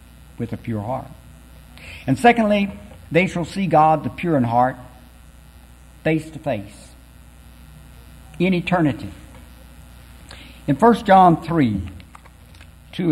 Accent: American